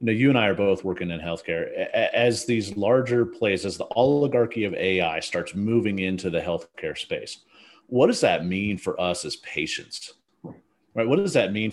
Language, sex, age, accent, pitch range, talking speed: English, male, 40-59, American, 95-125 Hz, 180 wpm